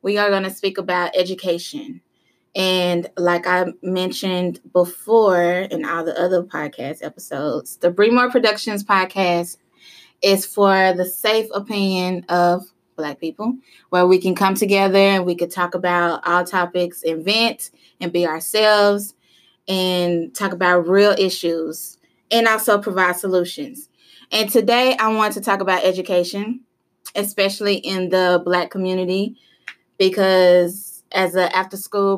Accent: American